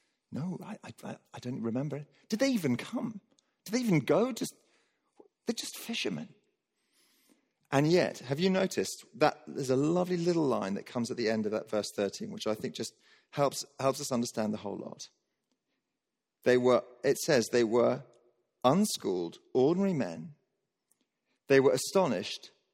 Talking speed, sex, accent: 160 wpm, male, British